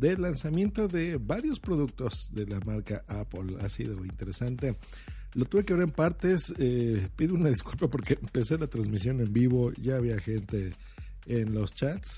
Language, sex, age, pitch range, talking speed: Spanish, male, 50-69, 110-170 Hz, 170 wpm